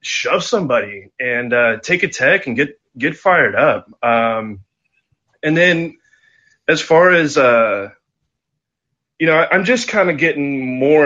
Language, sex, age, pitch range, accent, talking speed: English, male, 20-39, 110-135 Hz, American, 145 wpm